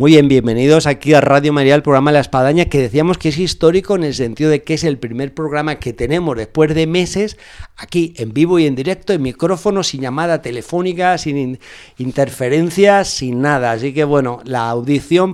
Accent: Spanish